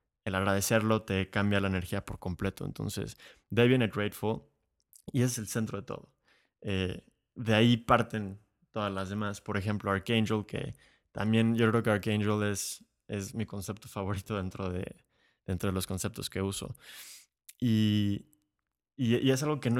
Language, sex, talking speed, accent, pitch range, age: Spanish, male, 165 wpm, Mexican, 95-115 Hz, 20-39